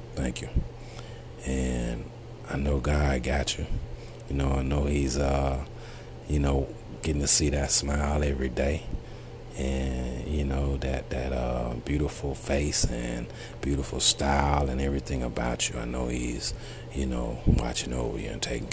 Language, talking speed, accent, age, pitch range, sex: English, 155 wpm, American, 30-49, 65-75 Hz, male